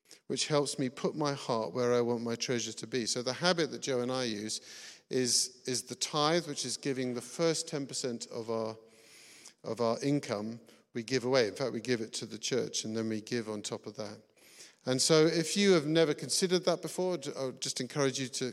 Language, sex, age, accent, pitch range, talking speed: English, male, 50-69, British, 115-145 Hz, 225 wpm